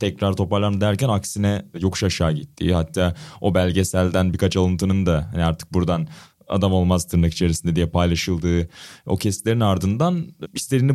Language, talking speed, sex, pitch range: Turkish, 140 wpm, male, 95-120 Hz